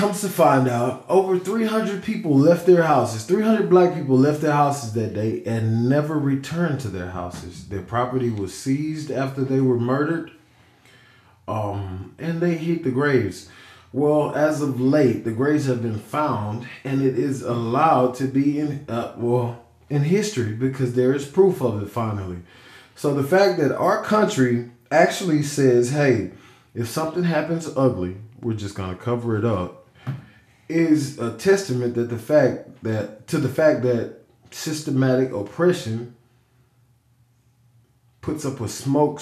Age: 20-39